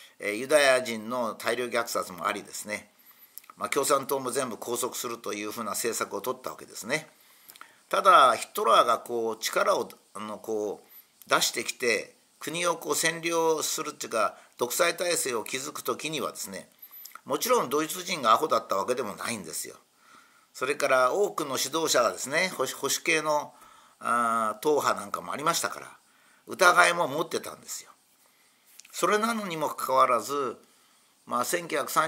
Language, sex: Japanese, male